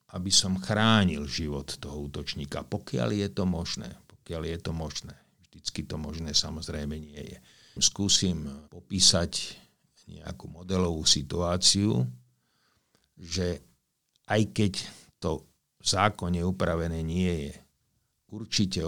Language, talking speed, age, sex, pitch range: Slovak, 110 wpm, 50-69, male, 80-95 Hz